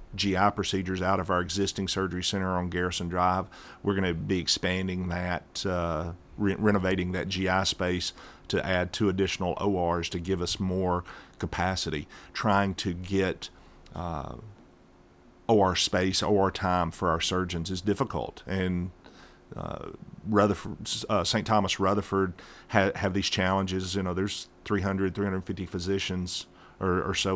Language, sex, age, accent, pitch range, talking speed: English, male, 40-59, American, 90-100 Hz, 135 wpm